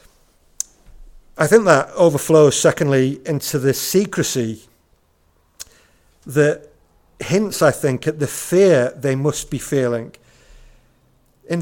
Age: 50-69